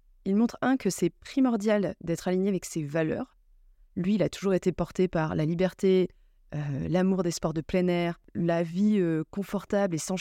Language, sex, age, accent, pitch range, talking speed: French, female, 20-39, French, 170-215 Hz, 195 wpm